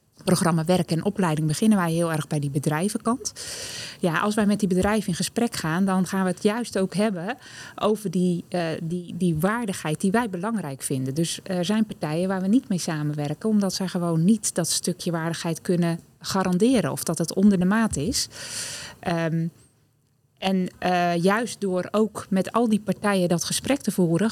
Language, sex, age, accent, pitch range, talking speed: Dutch, female, 20-39, Dutch, 170-210 Hz, 180 wpm